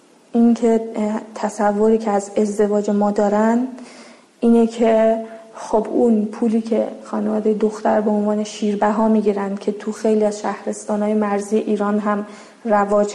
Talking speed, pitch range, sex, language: 140 wpm, 215-250 Hz, female, Persian